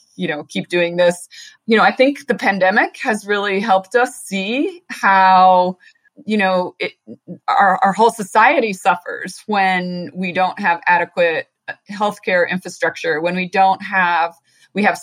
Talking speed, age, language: 150 wpm, 30-49, English